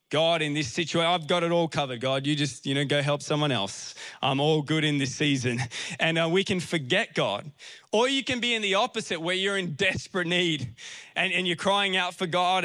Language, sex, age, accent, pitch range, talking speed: English, male, 20-39, Australian, 150-200 Hz, 235 wpm